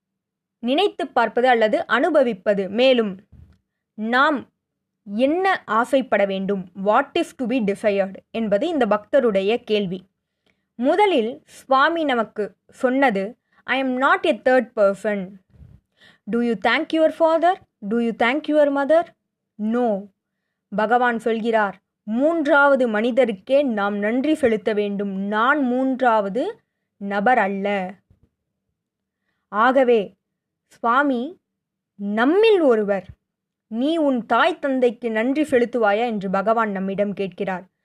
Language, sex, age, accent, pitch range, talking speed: Tamil, female, 20-39, native, 205-275 Hz, 105 wpm